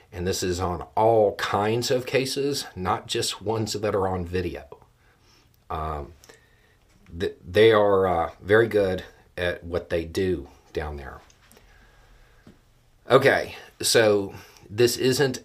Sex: male